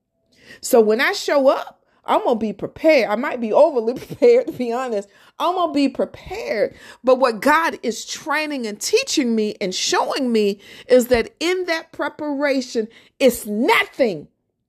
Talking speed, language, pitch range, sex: 160 wpm, English, 230-305 Hz, female